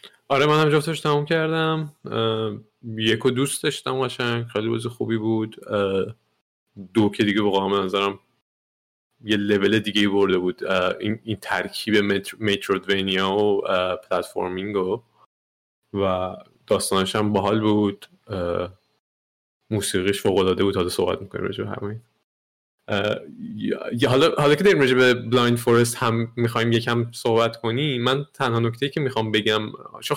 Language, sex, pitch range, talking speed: Persian, male, 105-130 Hz, 130 wpm